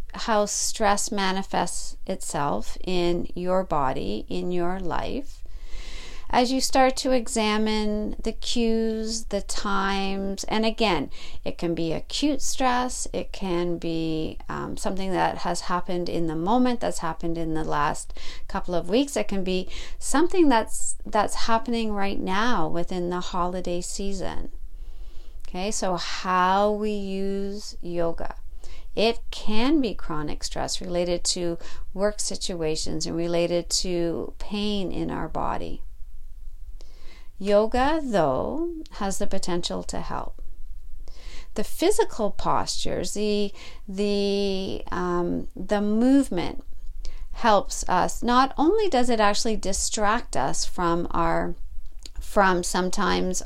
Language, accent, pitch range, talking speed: English, American, 170-225 Hz, 120 wpm